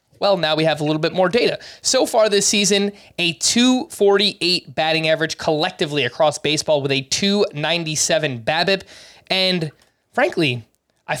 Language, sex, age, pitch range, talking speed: English, male, 20-39, 145-195 Hz, 145 wpm